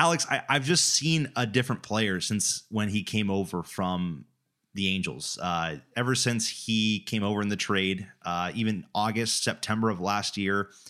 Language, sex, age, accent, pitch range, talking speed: English, male, 30-49, American, 95-115 Hz, 175 wpm